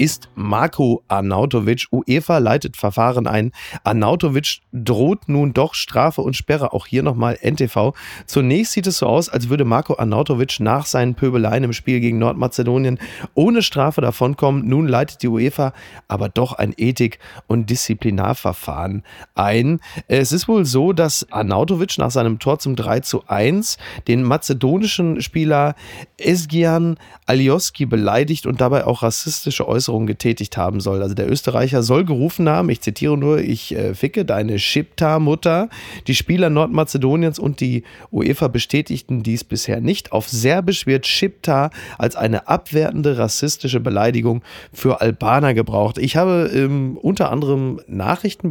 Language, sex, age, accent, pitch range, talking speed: German, male, 30-49, German, 110-145 Hz, 145 wpm